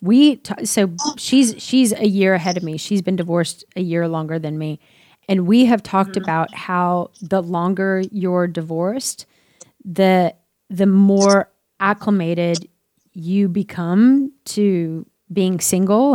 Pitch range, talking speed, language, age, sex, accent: 185-235 Hz, 135 wpm, English, 30-49, female, American